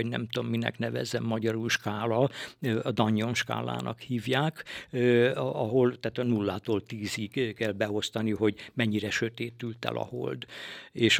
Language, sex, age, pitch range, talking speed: Hungarian, male, 60-79, 110-135 Hz, 135 wpm